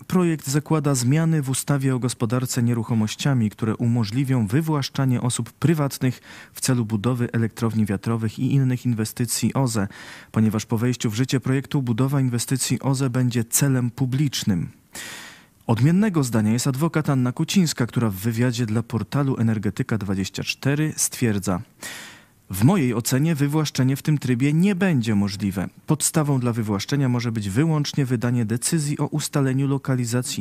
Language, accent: Polish, native